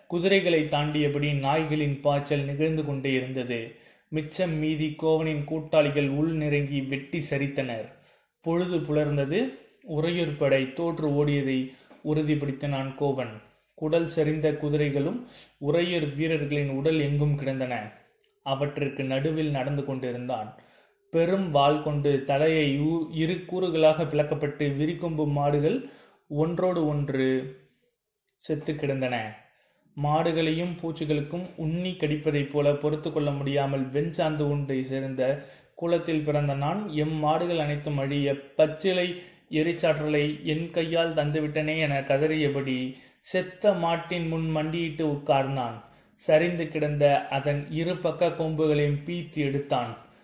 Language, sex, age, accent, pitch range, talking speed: Tamil, male, 30-49, native, 140-160 Hz, 100 wpm